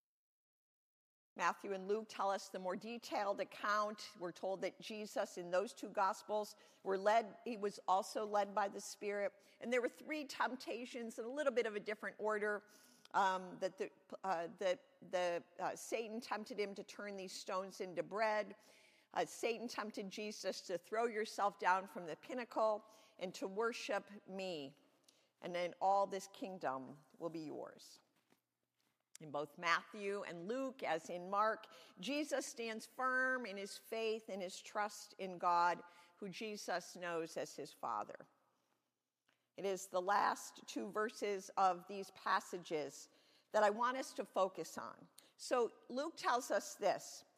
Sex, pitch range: female, 190-230 Hz